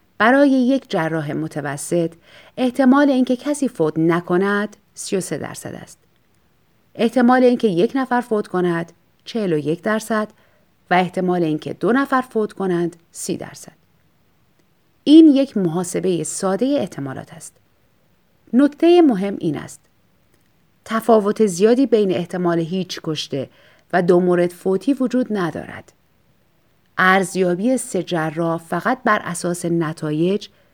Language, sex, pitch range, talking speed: Persian, female, 165-230 Hz, 115 wpm